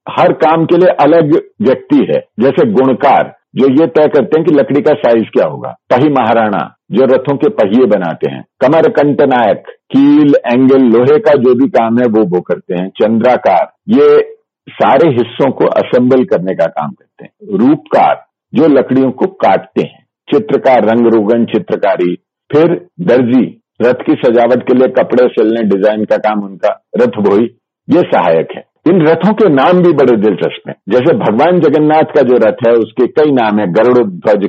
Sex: male